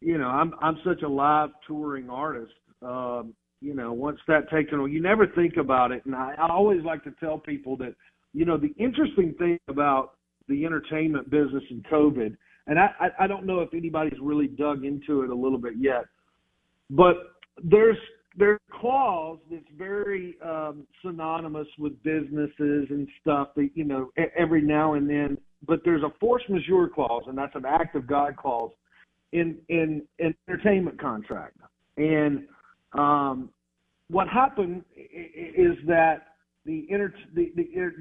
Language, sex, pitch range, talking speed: English, male, 145-180 Hz, 165 wpm